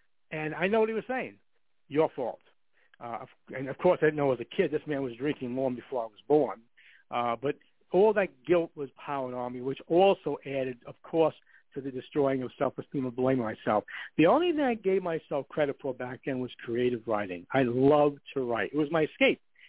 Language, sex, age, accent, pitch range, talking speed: English, male, 60-79, American, 135-175 Hz, 215 wpm